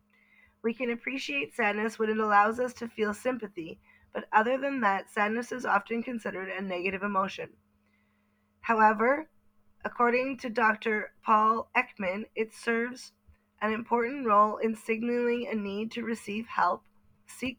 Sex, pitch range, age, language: female, 200-235 Hz, 20-39, English